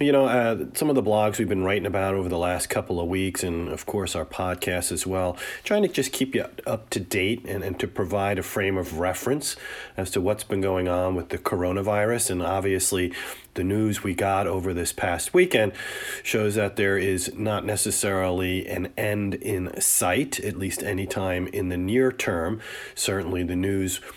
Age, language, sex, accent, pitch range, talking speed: 40-59, English, male, American, 95-115 Hz, 200 wpm